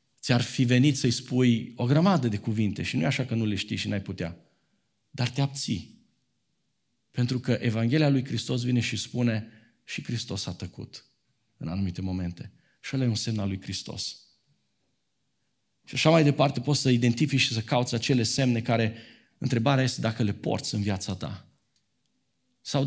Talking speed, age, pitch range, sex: 180 wpm, 40-59, 105-135 Hz, male